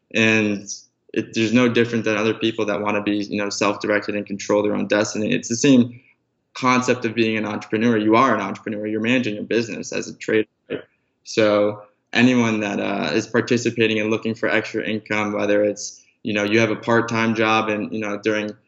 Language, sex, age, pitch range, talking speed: English, male, 20-39, 105-115 Hz, 200 wpm